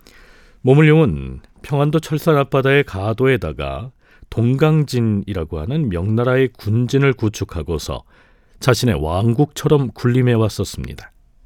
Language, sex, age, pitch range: Korean, male, 40-59, 95-135 Hz